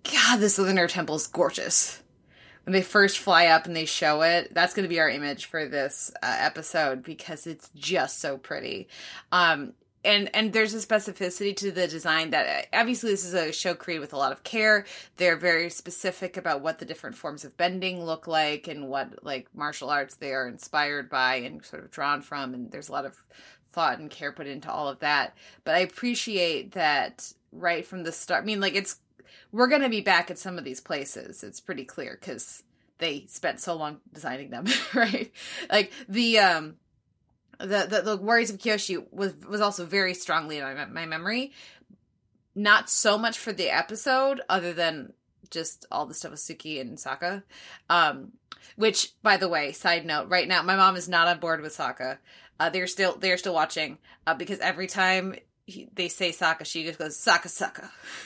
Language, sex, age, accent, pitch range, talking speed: English, female, 20-39, American, 160-200 Hz, 200 wpm